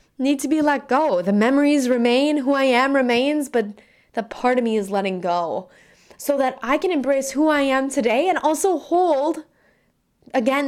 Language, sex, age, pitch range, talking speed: English, female, 10-29, 230-290 Hz, 185 wpm